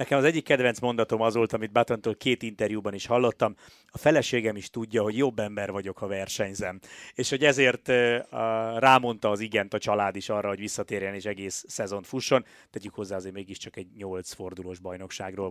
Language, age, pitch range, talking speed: Hungarian, 30-49, 105-135 Hz, 185 wpm